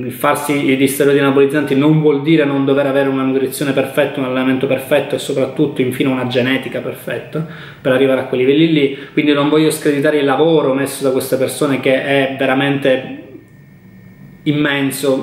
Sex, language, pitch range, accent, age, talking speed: male, Italian, 130-150 Hz, native, 20-39, 165 wpm